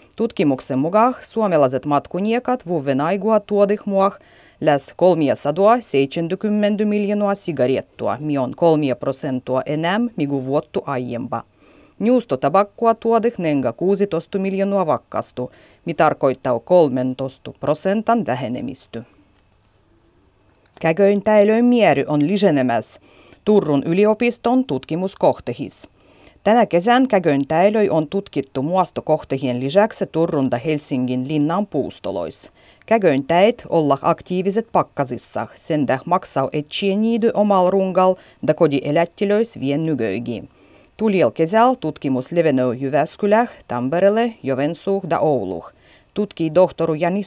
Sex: female